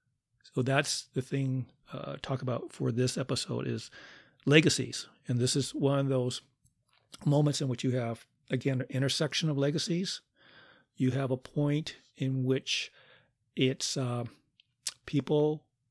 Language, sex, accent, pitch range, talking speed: English, male, American, 130-145 Hz, 140 wpm